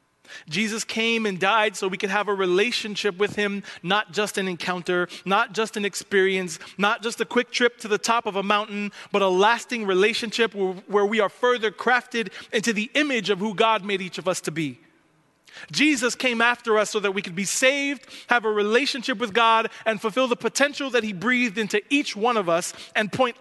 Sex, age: male, 30-49